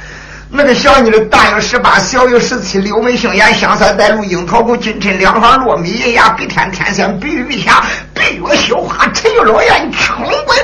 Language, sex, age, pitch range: Chinese, male, 50-69, 210-295 Hz